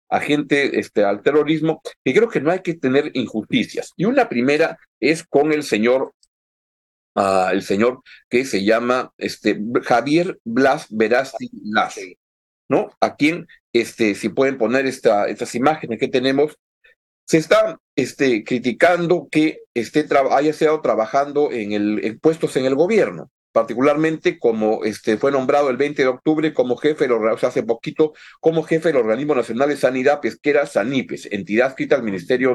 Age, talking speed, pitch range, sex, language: 40-59, 160 wpm, 115-155 Hz, male, Spanish